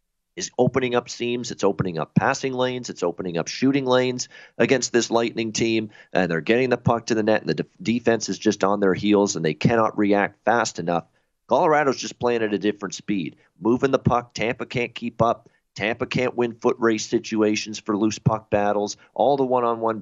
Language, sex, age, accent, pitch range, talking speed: English, male, 40-59, American, 100-120 Hz, 200 wpm